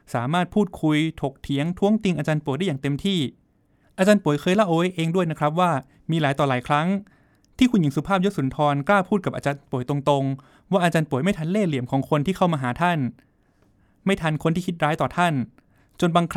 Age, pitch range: 20-39, 135-180 Hz